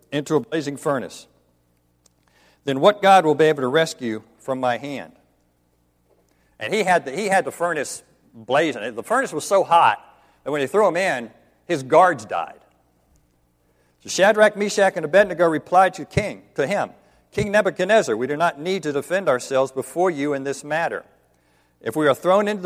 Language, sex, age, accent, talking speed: English, male, 50-69, American, 175 wpm